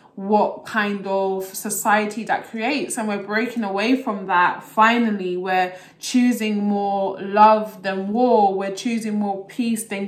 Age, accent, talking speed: 20-39, British, 145 wpm